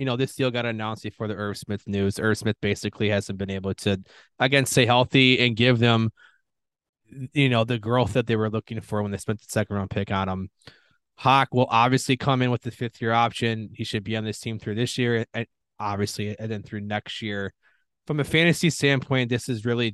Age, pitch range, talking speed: 20-39, 105-130 Hz, 225 wpm